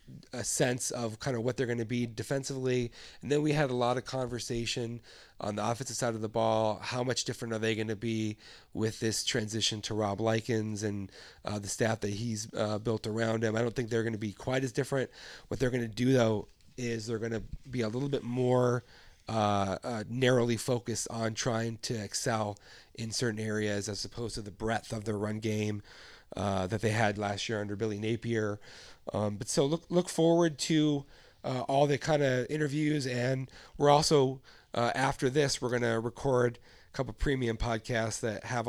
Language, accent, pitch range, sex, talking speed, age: English, American, 105-125 Hz, male, 210 wpm, 30-49